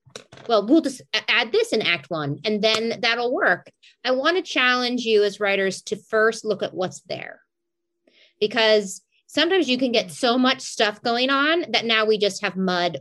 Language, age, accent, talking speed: English, 30-49, American, 190 wpm